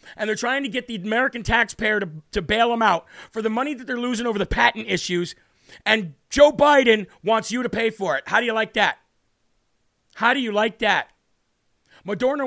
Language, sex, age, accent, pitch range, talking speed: English, male, 40-59, American, 195-230 Hz, 205 wpm